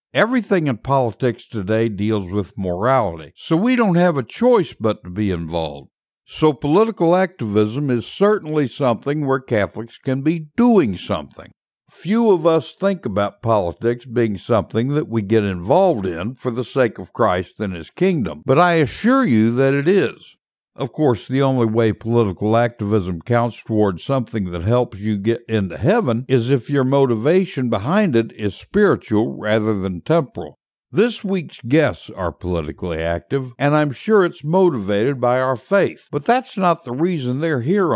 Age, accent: 60-79, American